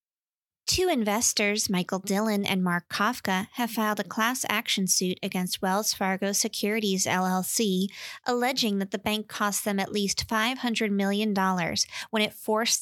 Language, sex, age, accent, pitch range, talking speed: English, female, 20-39, American, 180-215 Hz, 145 wpm